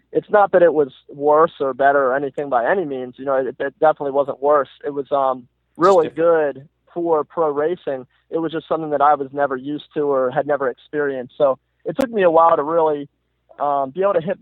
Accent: American